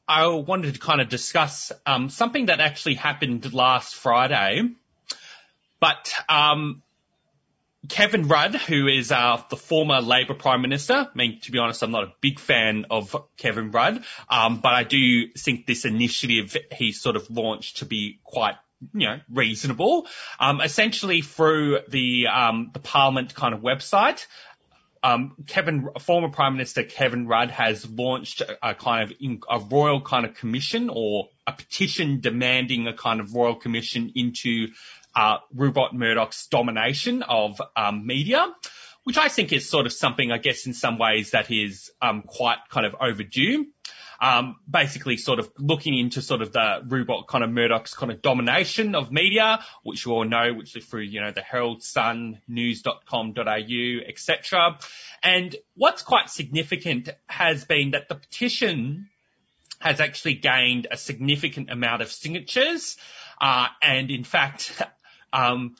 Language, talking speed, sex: English, 160 wpm, male